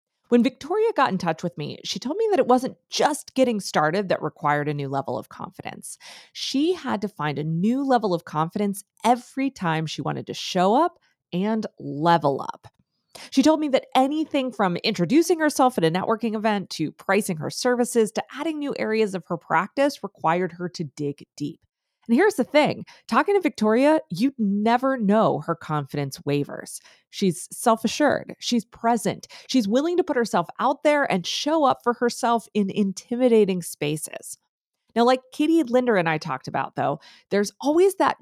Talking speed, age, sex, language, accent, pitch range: 180 wpm, 20-39, female, English, American, 170-260 Hz